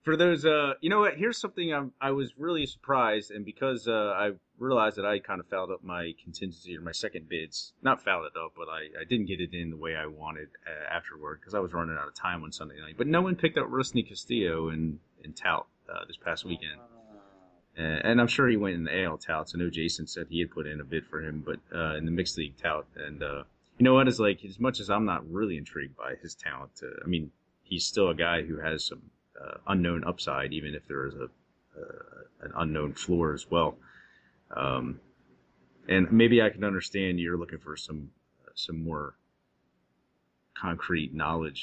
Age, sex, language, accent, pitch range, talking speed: 30-49, male, English, American, 80-105 Hz, 225 wpm